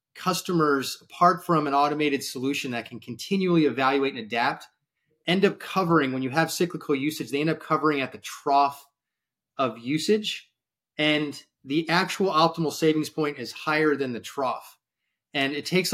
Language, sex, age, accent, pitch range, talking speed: English, male, 30-49, American, 130-160 Hz, 160 wpm